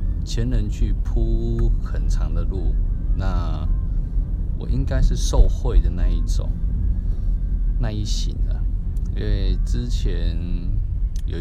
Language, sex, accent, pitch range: Chinese, male, native, 85-105 Hz